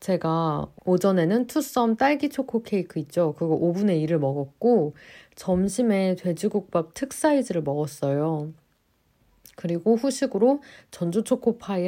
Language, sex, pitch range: Korean, female, 160-235 Hz